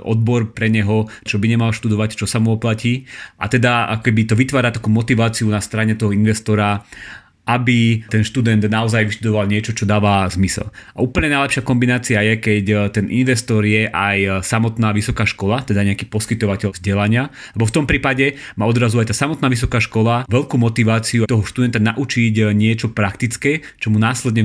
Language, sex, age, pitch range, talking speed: Slovak, male, 30-49, 105-120 Hz, 170 wpm